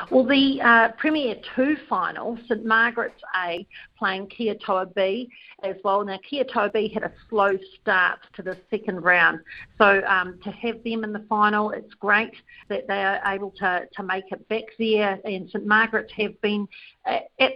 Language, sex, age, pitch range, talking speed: English, female, 50-69, 195-230 Hz, 175 wpm